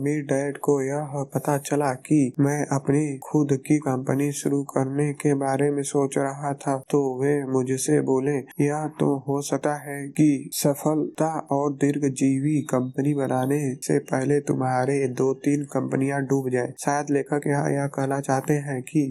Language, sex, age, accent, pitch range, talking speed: Hindi, male, 20-39, native, 135-145 Hz, 155 wpm